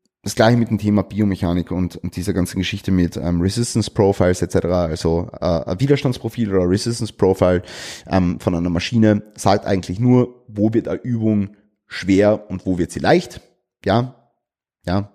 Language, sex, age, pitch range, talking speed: German, male, 30-49, 95-125 Hz, 170 wpm